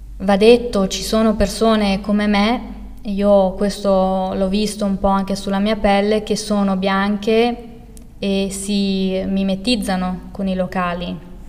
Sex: female